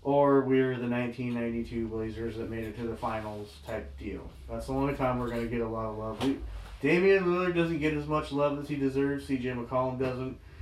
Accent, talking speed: American, 220 wpm